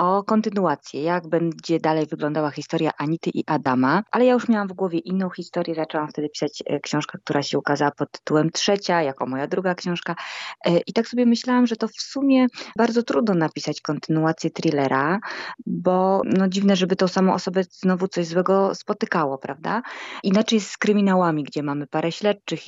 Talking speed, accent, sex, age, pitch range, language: 170 wpm, native, female, 20-39, 150-195 Hz, Polish